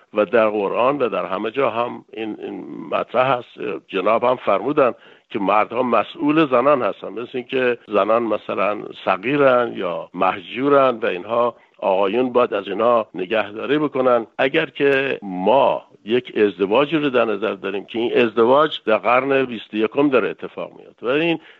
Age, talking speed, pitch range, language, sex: 60-79, 155 wpm, 115-150 Hz, Persian, male